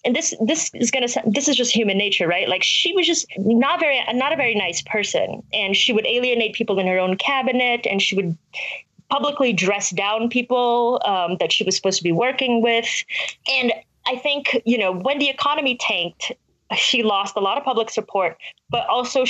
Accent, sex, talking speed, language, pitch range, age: American, female, 205 wpm, English, 195-260 Hz, 30-49